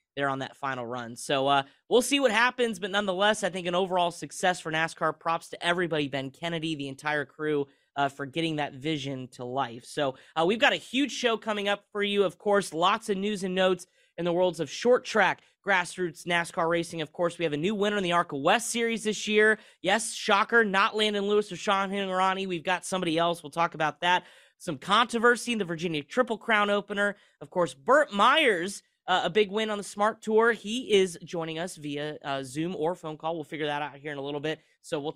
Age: 30-49